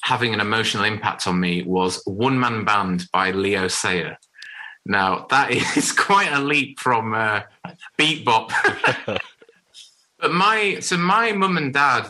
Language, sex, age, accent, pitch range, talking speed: English, male, 30-49, British, 105-145 Hz, 150 wpm